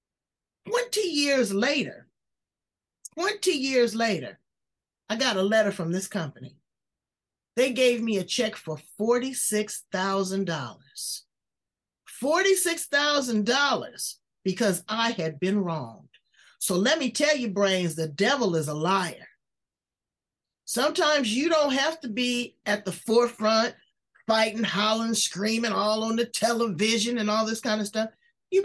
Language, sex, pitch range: English, male, 190-255 Hz